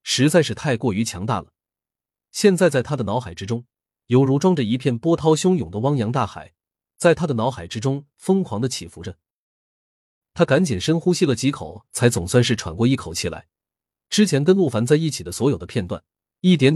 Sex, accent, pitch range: male, native, 100-155 Hz